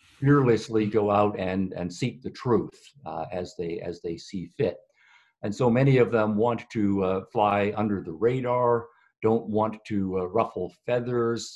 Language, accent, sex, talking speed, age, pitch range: English, American, male, 170 wpm, 50-69, 100-120 Hz